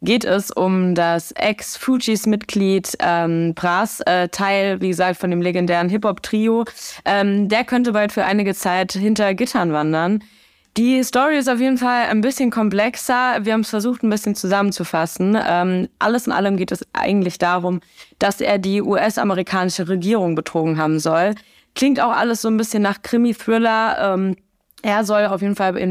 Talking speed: 165 wpm